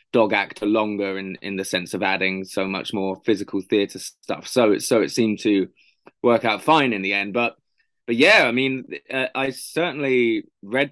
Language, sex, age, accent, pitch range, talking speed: English, male, 20-39, British, 105-125 Hz, 200 wpm